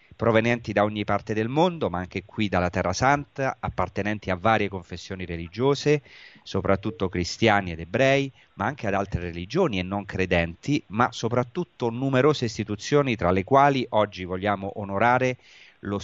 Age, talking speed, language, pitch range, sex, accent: 30-49, 150 wpm, Italian, 90-115 Hz, male, native